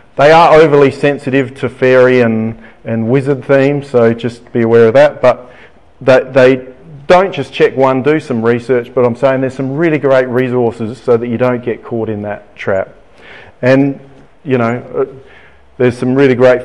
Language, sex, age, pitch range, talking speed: English, male, 30-49, 115-135 Hz, 175 wpm